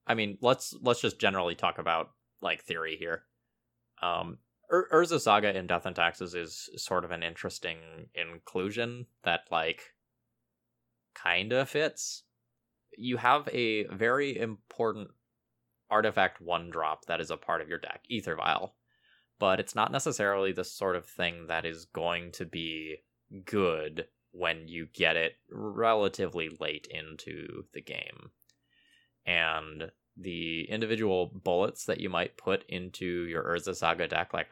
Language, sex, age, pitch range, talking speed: English, male, 20-39, 85-115 Hz, 145 wpm